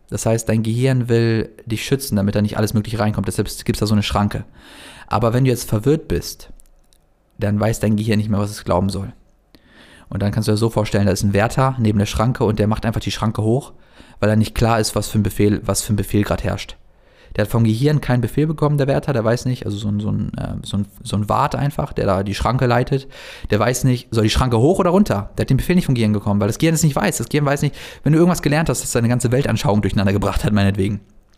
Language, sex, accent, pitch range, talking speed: German, male, German, 105-120 Hz, 260 wpm